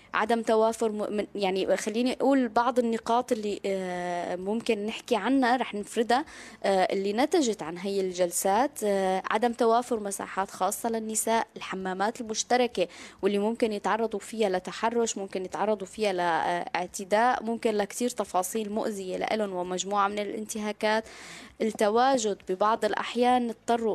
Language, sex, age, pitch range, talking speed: Arabic, female, 20-39, 195-235 Hz, 125 wpm